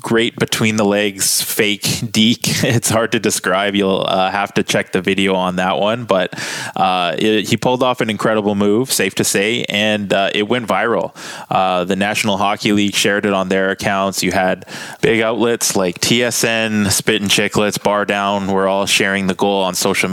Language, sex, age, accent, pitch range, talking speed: English, male, 20-39, American, 100-115 Hz, 195 wpm